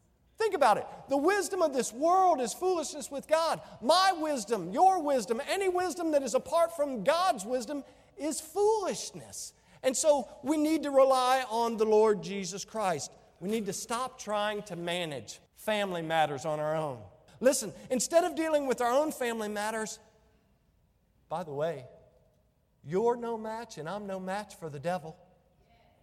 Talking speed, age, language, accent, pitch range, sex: 165 wpm, 50-69, English, American, 190-290 Hz, male